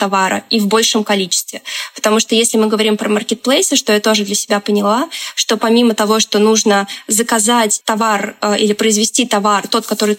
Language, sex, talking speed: Russian, female, 175 wpm